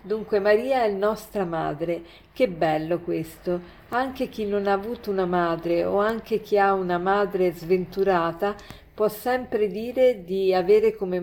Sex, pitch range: female, 180-215 Hz